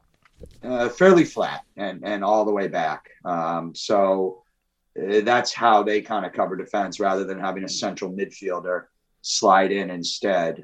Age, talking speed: 30-49, 160 wpm